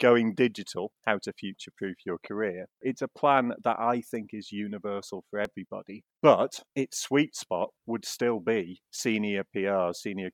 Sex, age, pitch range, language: male, 30-49, 95-125 Hz, English